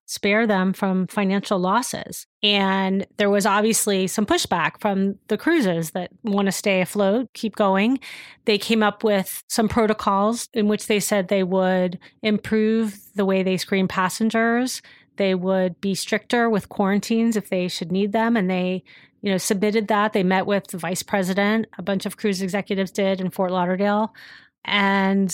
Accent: American